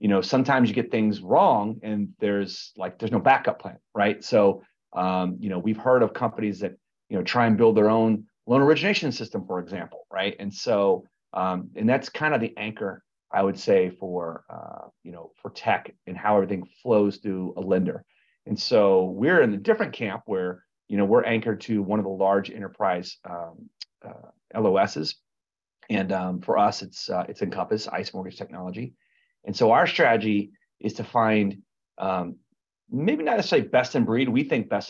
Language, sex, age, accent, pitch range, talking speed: English, male, 30-49, American, 95-120 Hz, 190 wpm